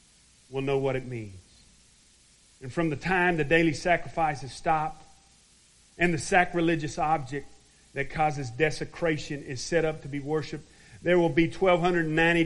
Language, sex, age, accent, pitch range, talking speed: English, male, 40-59, American, 125-170 Hz, 150 wpm